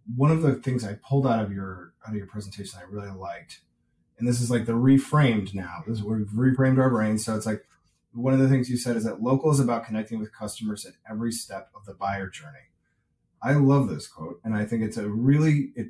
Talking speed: 240 wpm